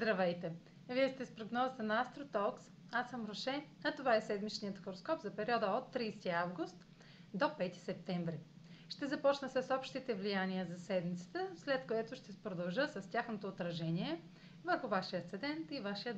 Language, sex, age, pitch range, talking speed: Bulgarian, female, 30-49, 180-250 Hz, 155 wpm